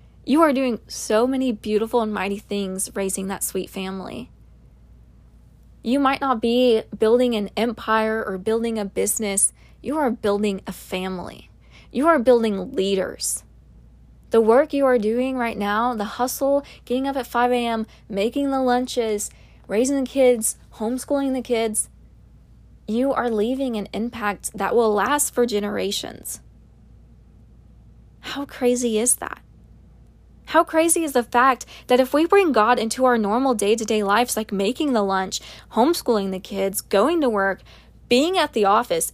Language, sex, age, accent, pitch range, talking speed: English, female, 20-39, American, 210-260 Hz, 150 wpm